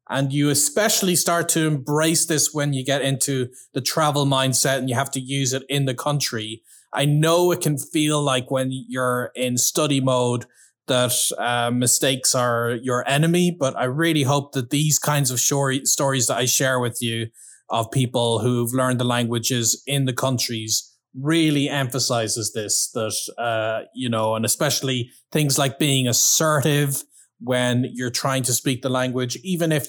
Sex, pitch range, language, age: male, 120-145 Hz, English, 20-39